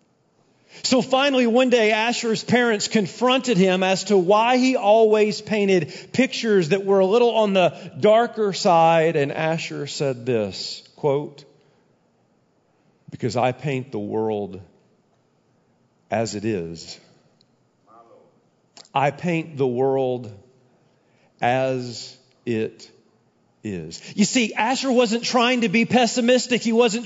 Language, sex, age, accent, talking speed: English, male, 40-59, American, 120 wpm